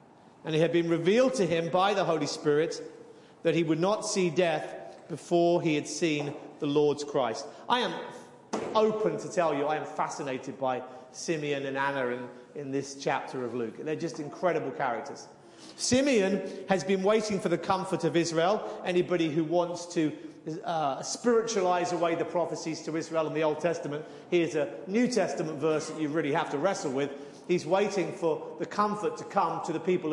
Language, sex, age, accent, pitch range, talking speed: English, male, 30-49, British, 160-200 Hz, 185 wpm